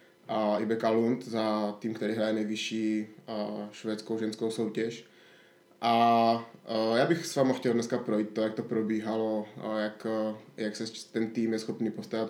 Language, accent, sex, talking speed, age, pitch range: Czech, native, male, 150 wpm, 20-39, 110-120 Hz